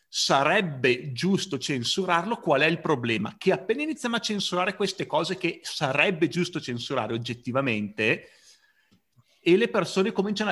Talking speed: 130 wpm